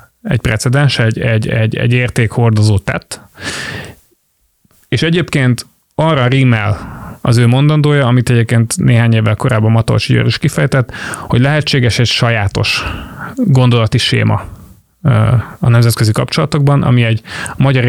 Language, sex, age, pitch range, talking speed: Hungarian, male, 30-49, 110-135 Hz, 120 wpm